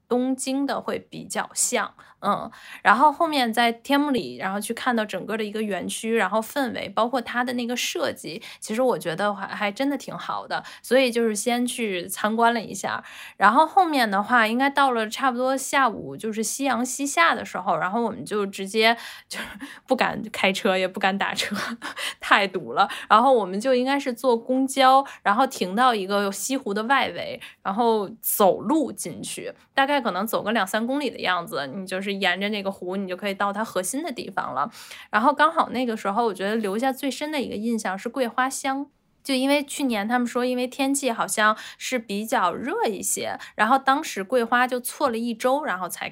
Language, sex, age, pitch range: Chinese, female, 10-29, 205-265 Hz